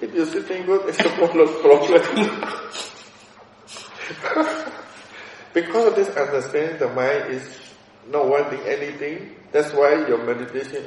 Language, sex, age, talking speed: English, male, 60-79, 115 wpm